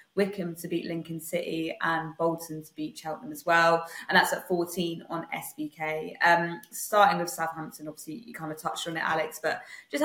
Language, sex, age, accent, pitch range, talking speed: English, female, 20-39, British, 160-180 Hz, 190 wpm